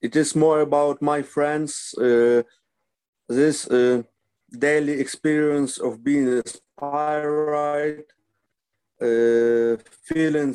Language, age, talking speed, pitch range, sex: English, 50-69, 90 wpm, 125-155 Hz, male